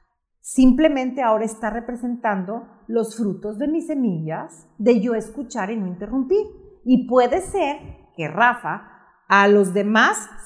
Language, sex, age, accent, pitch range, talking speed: Spanish, female, 40-59, Mexican, 210-285 Hz, 130 wpm